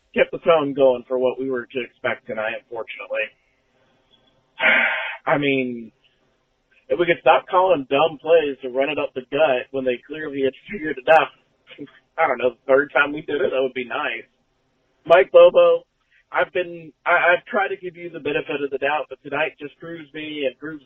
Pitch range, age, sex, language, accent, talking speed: 130-150 Hz, 40-59, male, English, American, 195 wpm